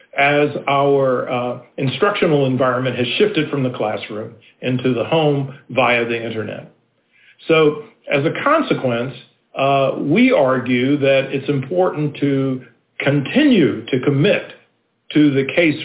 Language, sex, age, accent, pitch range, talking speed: English, male, 50-69, American, 125-150 Hz, 125 wpm